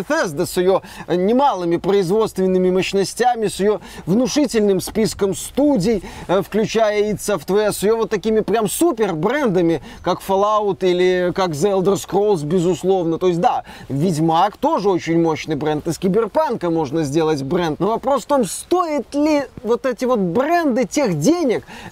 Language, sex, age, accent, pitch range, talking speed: Russian, male, 20-39, native, 180-235 Hz, 150 wpm